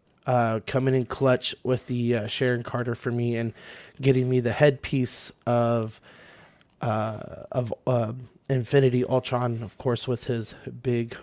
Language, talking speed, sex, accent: English, 145 wpm, male, American